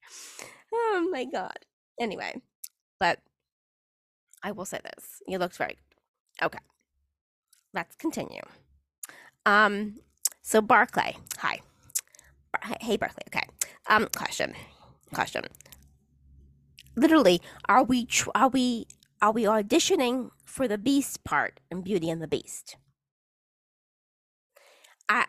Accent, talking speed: American, 105 wpm